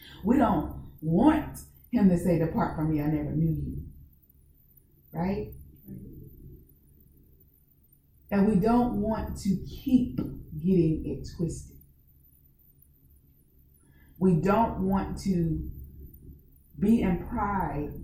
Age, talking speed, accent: 30-49, 100 wpm, American